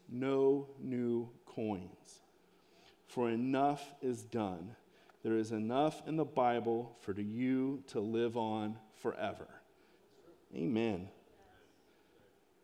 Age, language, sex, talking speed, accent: 40-59, English, male, 95 wpm, American